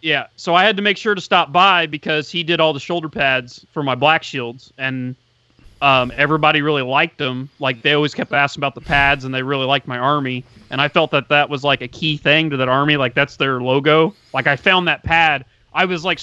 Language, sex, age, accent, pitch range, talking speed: English, male, 30-49, American, 130-160 Hz, 245 wpm